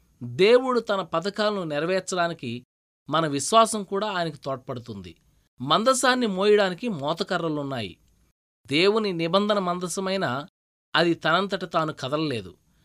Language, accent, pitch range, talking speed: Telugu, native, 140-200 Hz, 90 wpm